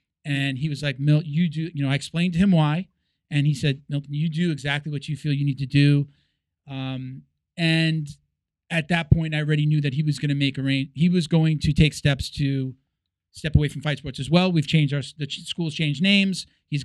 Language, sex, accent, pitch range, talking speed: English, male, American, 140-170 Hz, 240 wpm